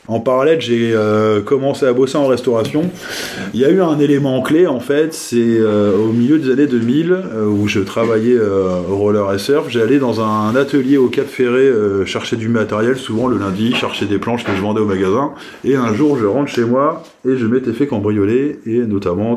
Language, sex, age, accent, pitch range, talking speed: French, male, 20-39, French, 105-130 Hz, 210 wpm